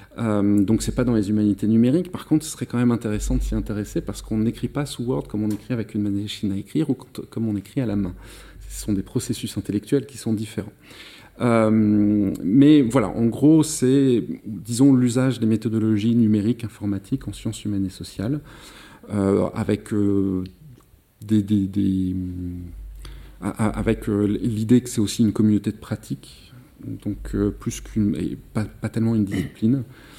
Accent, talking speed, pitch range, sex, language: French, 185 wpm, 100-115 Hz, male, French